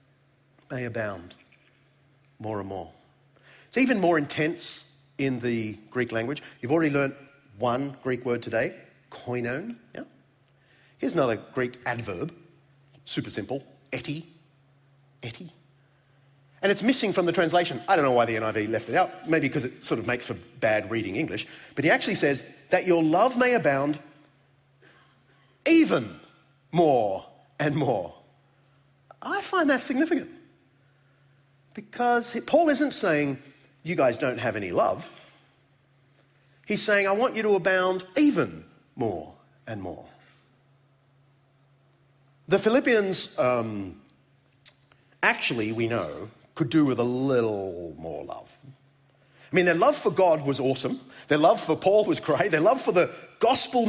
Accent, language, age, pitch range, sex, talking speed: Australian, English, 40-59, 130-175 Hz, male, 140 wpm